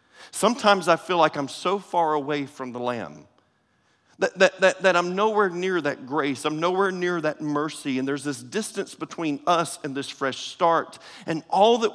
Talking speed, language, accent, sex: 185 wpm, English, American, male